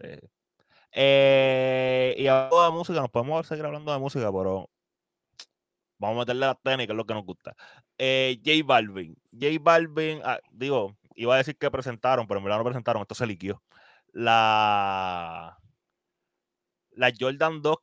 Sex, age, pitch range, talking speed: male, 20-39, 110-135 Hz, 155 wpm